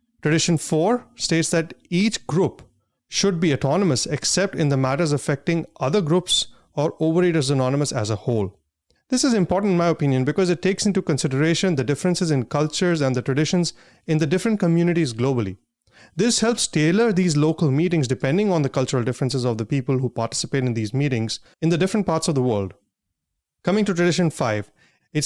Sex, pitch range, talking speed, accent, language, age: male, 130-165 Hz, 180 wpm, Indian, English, 30-49